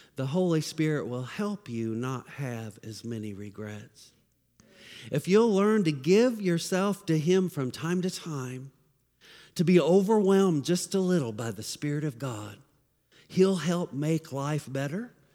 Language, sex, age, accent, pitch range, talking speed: English, male, 50-69, American, 130-180 Hz, 155 wpm